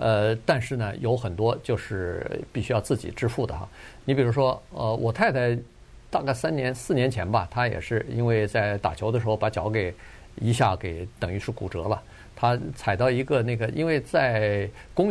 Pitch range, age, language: 110-135 Hz, 50-69, Chinese